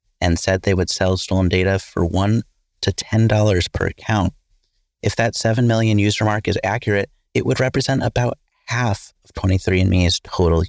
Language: English